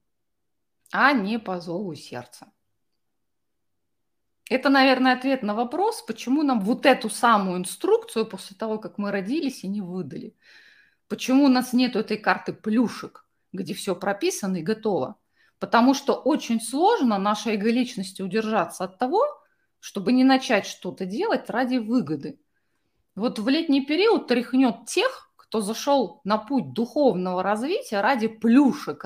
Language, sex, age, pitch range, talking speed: Russian, female, 30-49, 195-260 Hz, 135 wpm